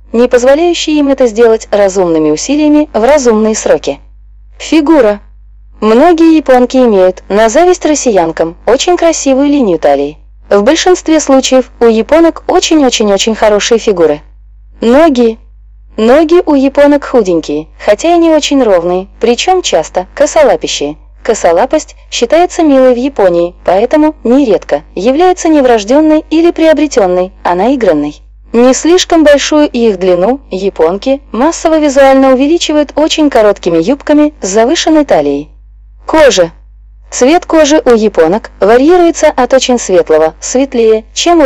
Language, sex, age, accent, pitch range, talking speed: Russian, female, 20-39, native, 200-305 Hz, 115 wpm